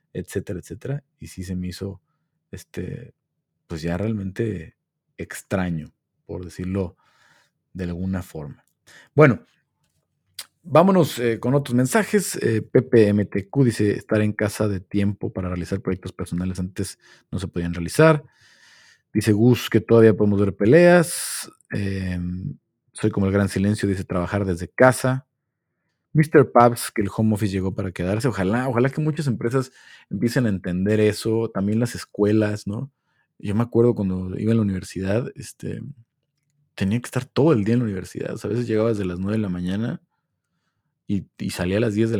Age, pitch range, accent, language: 40-59, 95-120 Hz, Mexican, Spanish